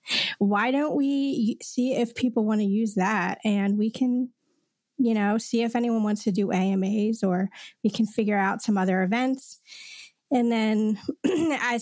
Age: 30-49